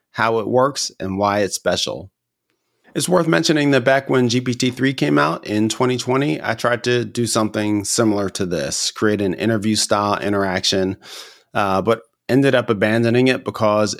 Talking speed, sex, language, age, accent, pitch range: 160 wpm, male, English, 30-49, American, 95-115 Hz